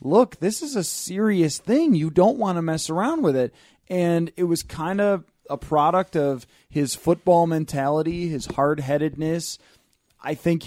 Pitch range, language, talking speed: 140-170 Hz, English, 165 wpm